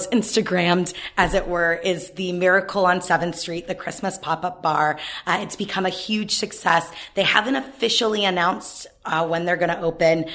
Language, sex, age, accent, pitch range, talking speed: English, female, 20-39, American, 170-195 Hz, 175 wpm